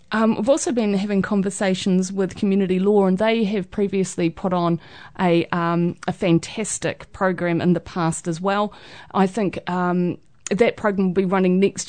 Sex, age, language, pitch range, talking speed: female, 30-49, English, 180-210 Hz, 170 wpm